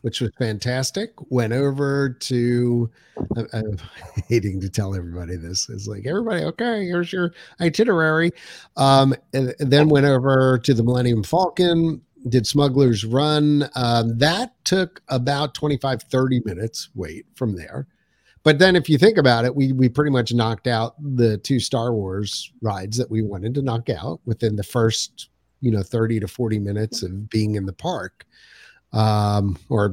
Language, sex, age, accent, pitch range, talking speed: English, male, 50-69, American, 110-145 Hz, 165 wpm